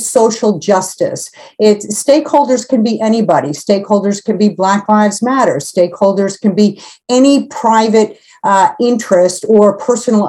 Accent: American